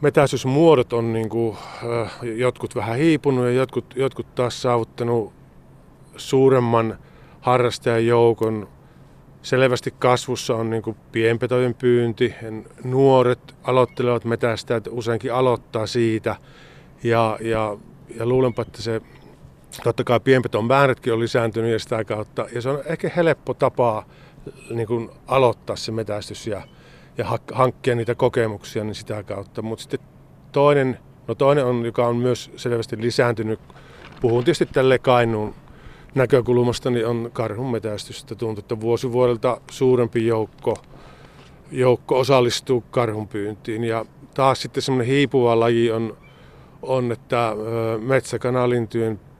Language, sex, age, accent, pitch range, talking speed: Finnish, male, 50-69, native, 115-130 Hz, 110 wpm